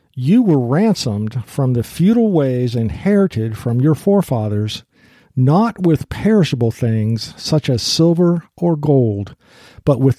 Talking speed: 130 wpm